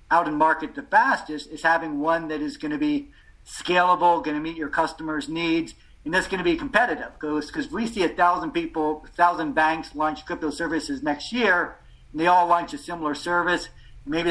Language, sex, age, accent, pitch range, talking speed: English, male, 50-69, American, 150-175 Hz, 195 wpm